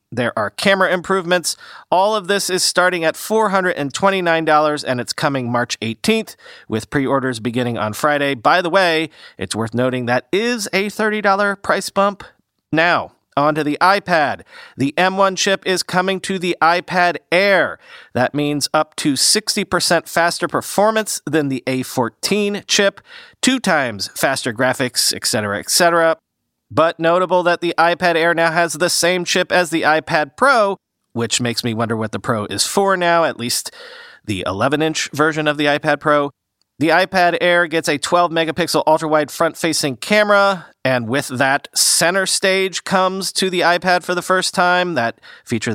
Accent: American